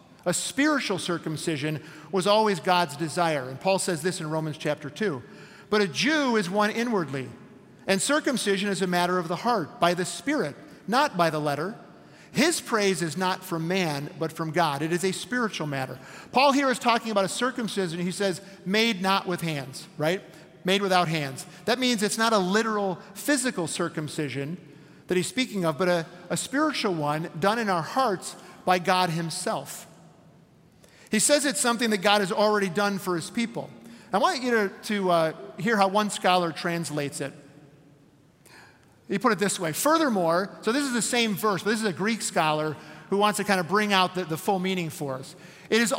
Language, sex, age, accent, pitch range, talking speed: English, male, 50-69, American, 165-215 Hz, 195 wpm